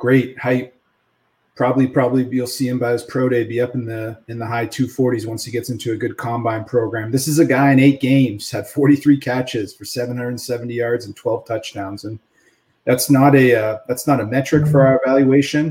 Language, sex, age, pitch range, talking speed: English, male, 30-49, 120-140 Hz, 230 wpm